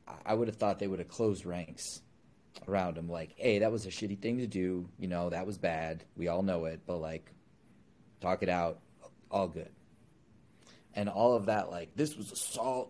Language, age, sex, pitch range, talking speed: English, 30-49, male, 90-110 Hz, 205 wpm